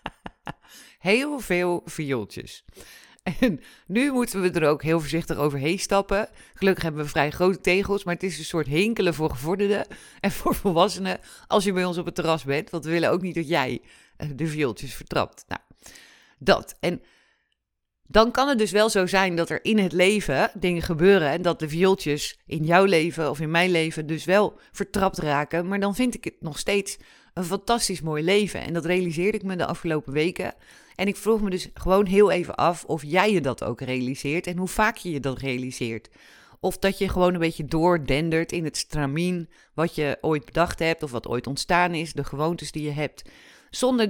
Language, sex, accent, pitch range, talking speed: Dutch, female, Dutch, 155-195 Hz, 200 wpm